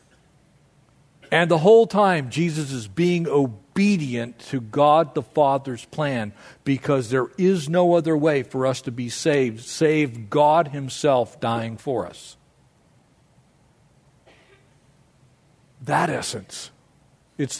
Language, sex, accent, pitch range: English, male, American, 135-170 Hz